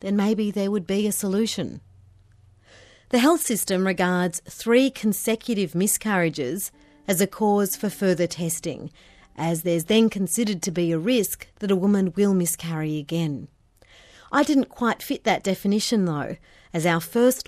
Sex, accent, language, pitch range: female, Australian, English, 175-225 Hz